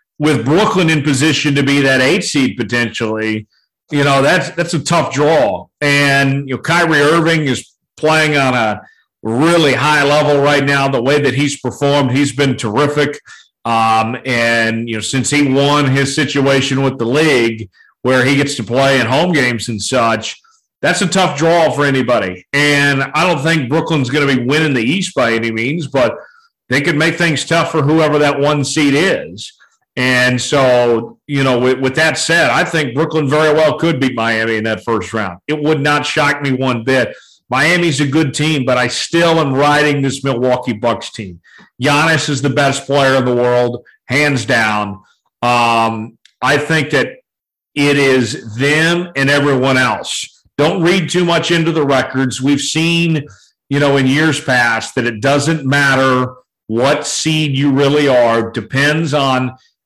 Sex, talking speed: male, 180 wpm